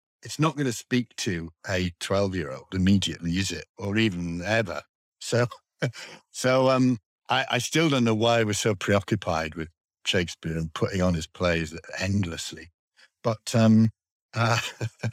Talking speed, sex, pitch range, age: 160 wpm, male, 90-120 Hz, 60-79